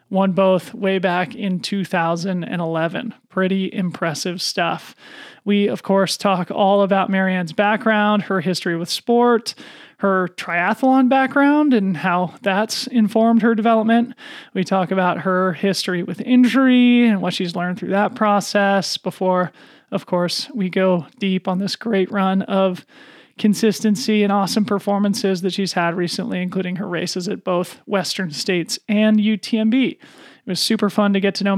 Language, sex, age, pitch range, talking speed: English, male, 30-49, 185-220 Hz, 150 wpm